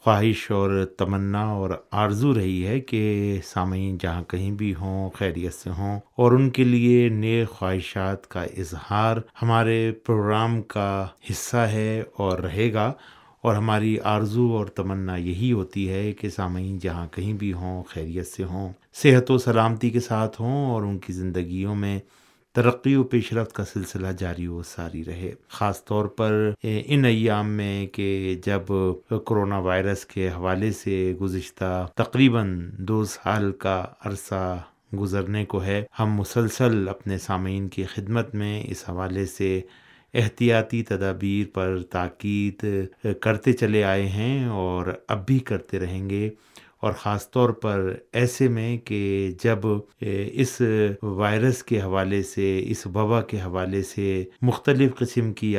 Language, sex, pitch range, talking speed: Urdu, male, 95-115 Hz, 145 wpm